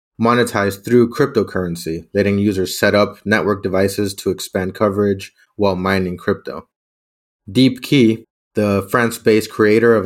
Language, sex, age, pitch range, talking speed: English, male, 30-49, 100-115 Hz, 120 wpm